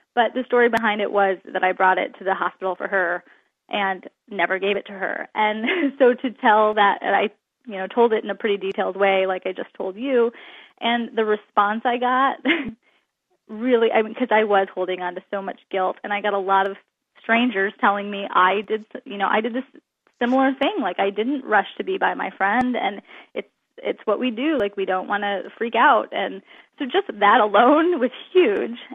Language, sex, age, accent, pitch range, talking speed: English, female, 20-39, American, 200-255 Hz, 220 wpm